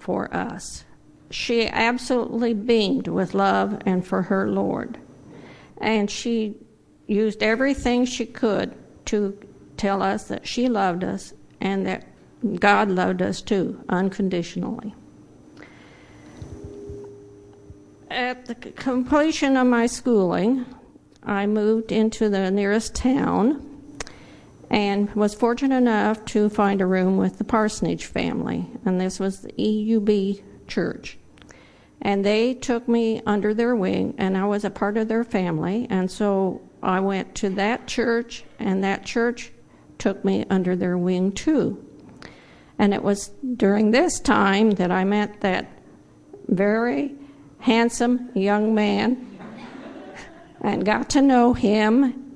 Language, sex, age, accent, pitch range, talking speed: English, female, 50-69, American, 195-235 Hz, 125 wpm